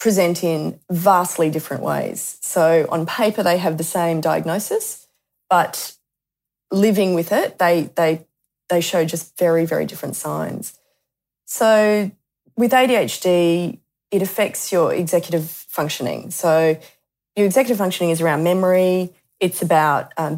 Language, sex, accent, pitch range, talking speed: English, female, Australian, 165-200 Hz, 130 wpm